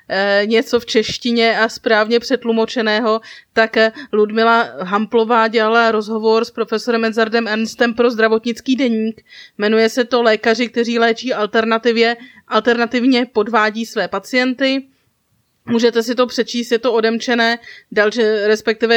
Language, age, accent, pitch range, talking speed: Czech, 30-49, native, 220-240 Hz, 120 wpm